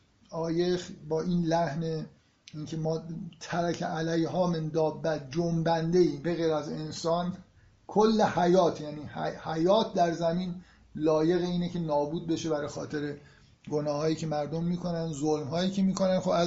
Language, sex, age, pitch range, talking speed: Persian, male, 50-69, 155-185 Hz, 140 wpm